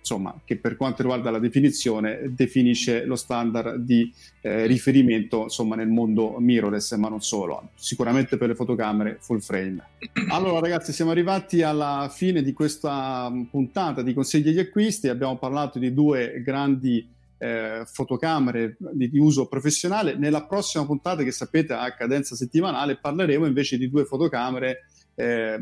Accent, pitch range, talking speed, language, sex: native, 120-150 Hz, 150 wpm, Italian, male